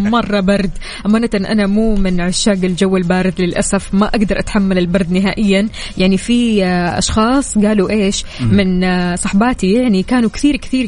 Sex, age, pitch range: female, 20-39, 190-230 Hz